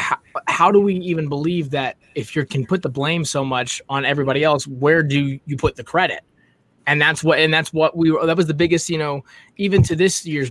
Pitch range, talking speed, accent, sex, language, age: 135-170 Hz, 240 wpm, American, male, English, 20-39